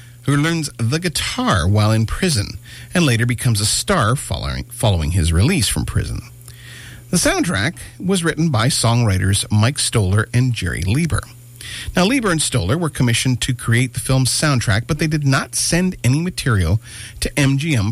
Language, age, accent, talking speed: English, 50-69, American, 165 wpm